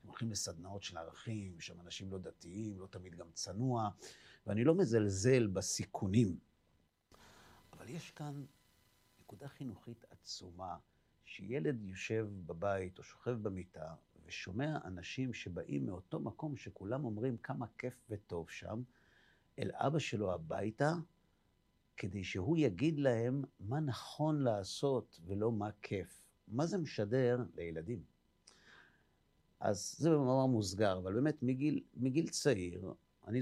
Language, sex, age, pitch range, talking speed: Hebrew, male, 50-69, 95-130 Hz, 120 wpm